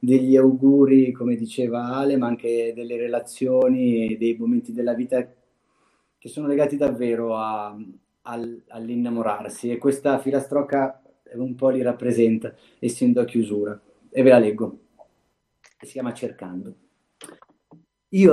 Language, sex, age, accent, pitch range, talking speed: Italian, male, 30-49, native, 115-145 Hz, 130 wpm